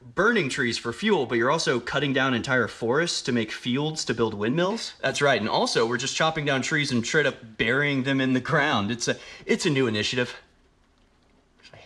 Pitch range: 115-170 Hz